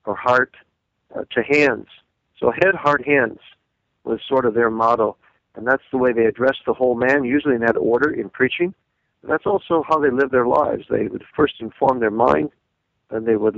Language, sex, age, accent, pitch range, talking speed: English, male, 50-69, American, 115-140 Hz, 205 wpm